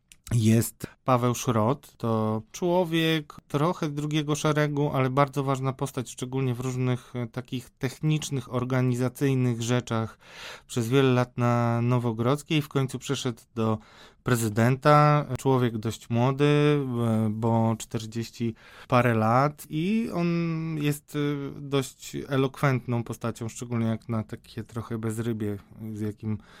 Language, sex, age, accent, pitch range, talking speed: Polish, male, 20-39, native, 115-135 Hz, 115 wpm